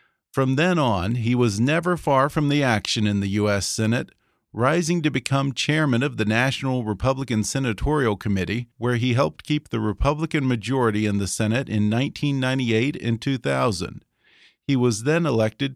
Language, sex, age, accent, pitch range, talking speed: English, male, 40-59, American, 110-145 Hz, 160 wpm